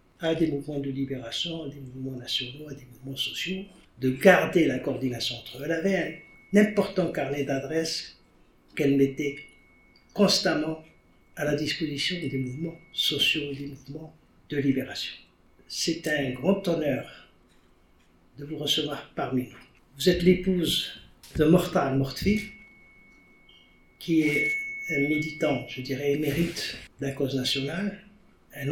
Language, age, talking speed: English, 60-79, 135 wpm